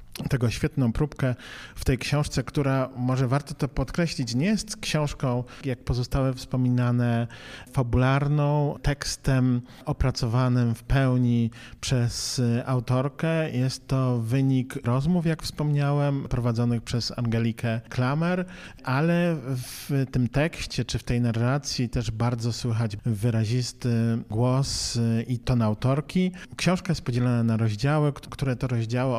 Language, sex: Polish, male